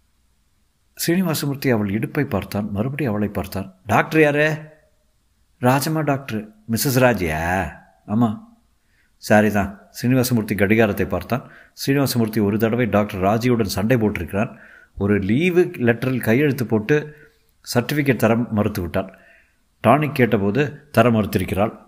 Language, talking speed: Tamil, 105 wpm